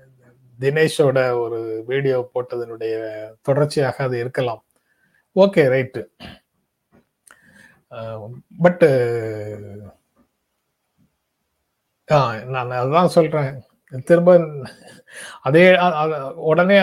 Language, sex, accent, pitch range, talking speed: Tamil, male, native, 130-175 Hz, 55 wpm